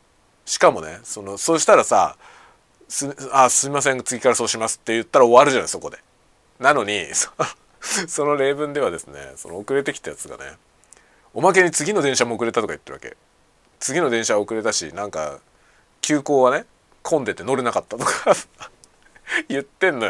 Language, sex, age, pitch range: Japanese, male, 40-59, 110-175 Hz